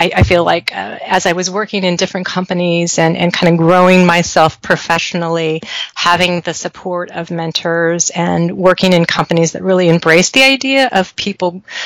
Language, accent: English, American